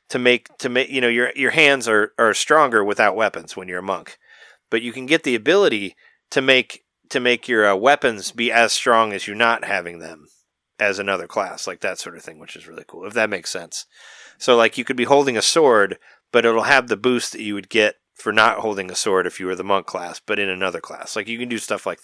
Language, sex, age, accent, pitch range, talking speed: English, male, 30-49, American, 105-125 Hz, 255 wpm